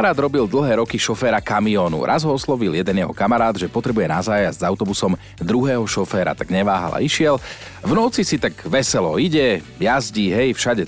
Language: Slovak